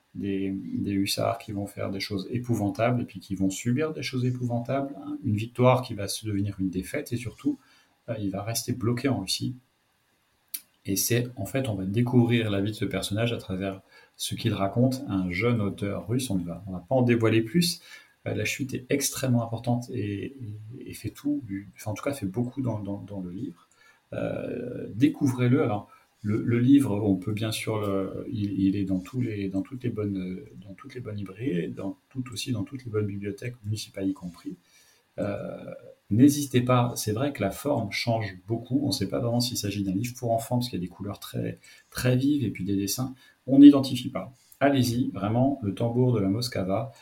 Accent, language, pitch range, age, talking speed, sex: French, French, 100-130 Hz, 40-59, 210 wpm, male